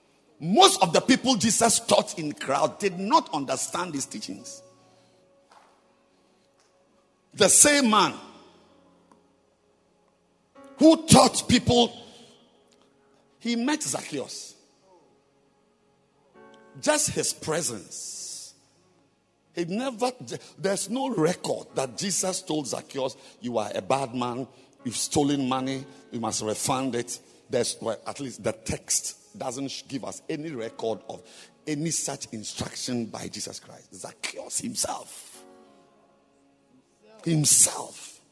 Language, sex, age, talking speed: English, male, 50-69, 105 wpm